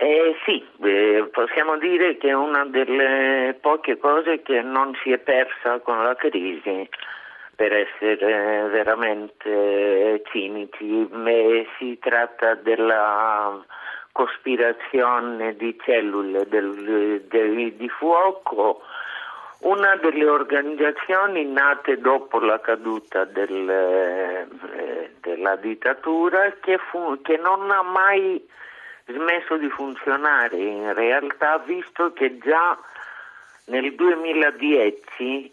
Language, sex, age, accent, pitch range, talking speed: Italian, male, 50-69, native, 115-160 Hz, 95 wpm